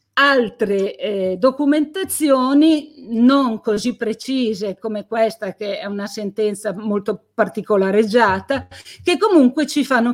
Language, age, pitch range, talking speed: Italian, 50-69, 200-250 Hz, 105 wpm